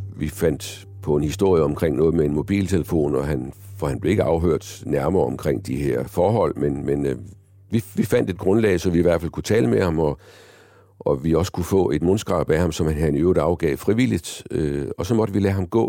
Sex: male